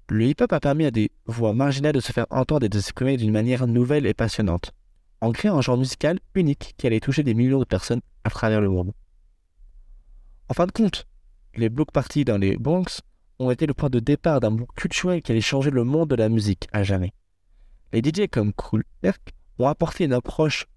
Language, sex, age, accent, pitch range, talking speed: French, male, 20-39, French, 105-150 Hz, 215 wpm